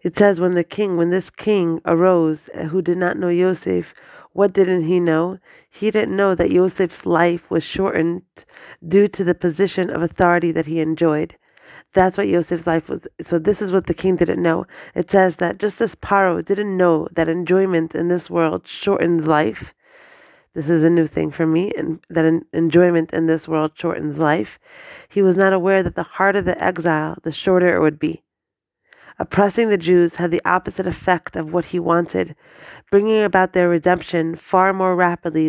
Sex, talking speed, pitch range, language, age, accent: female, 185 wpm, 165-185 Hz, English, 30-49, American